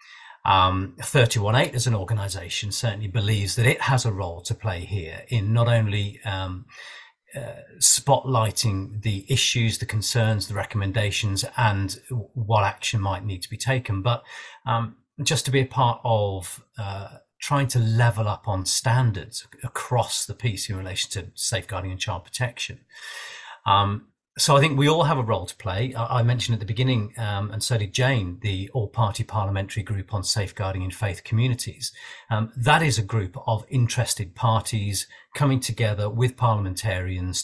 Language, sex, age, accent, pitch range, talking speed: English, male, 40-59, British, 105-130 Hz, 165 wpm